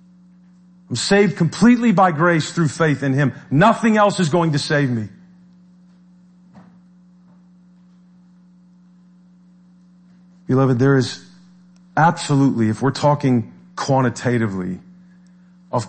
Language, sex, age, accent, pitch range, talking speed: English, male, 40-59, American, 135-180 Hz, 95 wpm